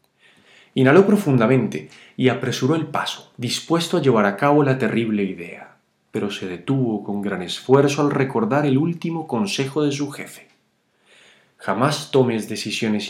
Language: Spanish